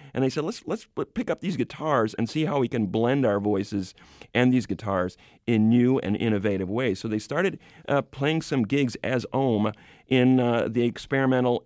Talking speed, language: 195 wpm, English